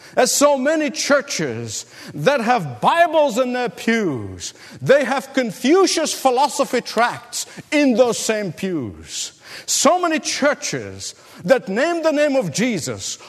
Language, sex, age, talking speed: English, male, 50-69, 125 wpm